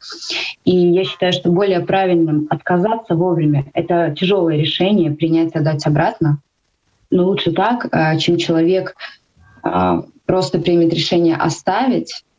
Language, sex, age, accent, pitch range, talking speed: Russian, female, 20-39, native, 155-175 Hz, 115 wpm